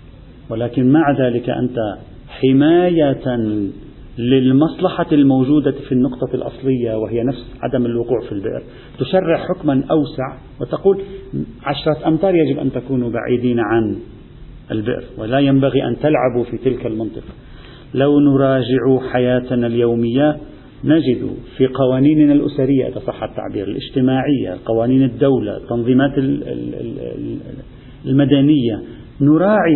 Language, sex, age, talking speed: Arabic, male, 40-59, 105 wpm